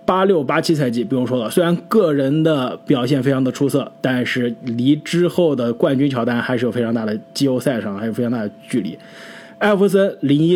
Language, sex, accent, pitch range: Chinese, male, native, 125-185 Hz